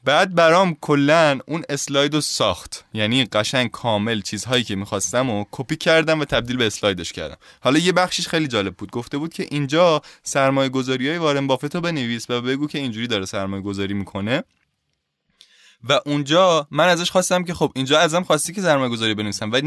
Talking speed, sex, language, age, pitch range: 185 wpm, male, Persian, 20-39, 105-145 Hz